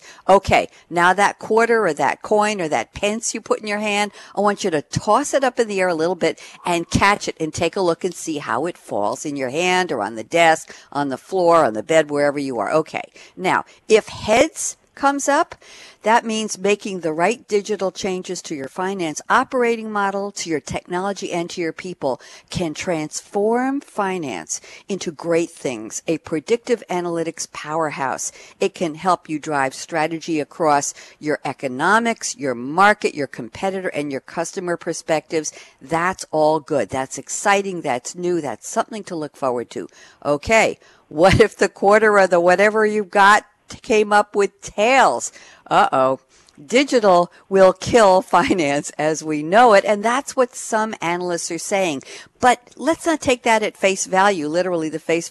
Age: 60-79